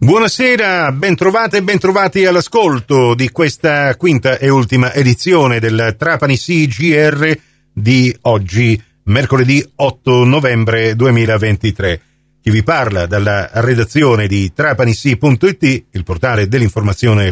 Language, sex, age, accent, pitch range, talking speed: Italian, male, 40-59, native, 110-155 Hz, 105 wpm